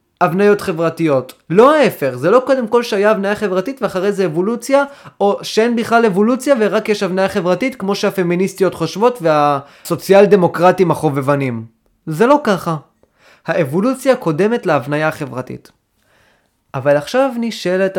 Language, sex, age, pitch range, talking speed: Hebrew, male, 20-39, 155-235 Hz, 125 wpm